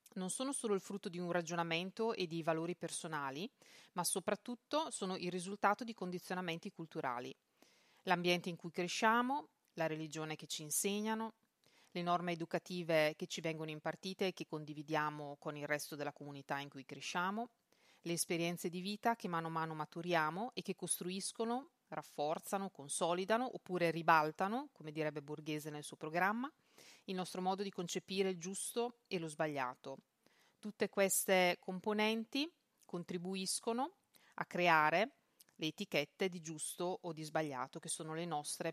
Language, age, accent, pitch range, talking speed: Italian, 30-49, native, 160-210 Hz, 150 wpm